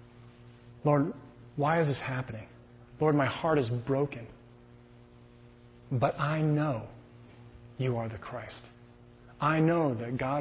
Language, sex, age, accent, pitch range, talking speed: English, male, 30-49, American, 120-140 Hz, 120 wpm